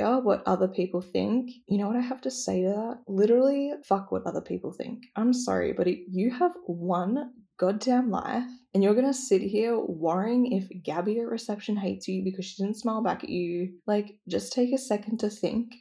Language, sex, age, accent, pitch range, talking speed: English, female, 10-29, Australian, 180-235 Hz, 205 wpm